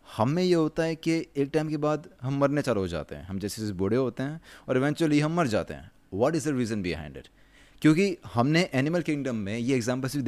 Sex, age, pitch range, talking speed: male, 20-39, 115-150 Hz, 240 wpm